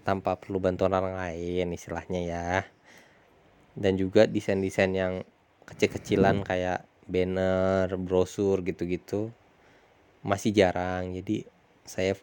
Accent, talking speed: native, 100 wpm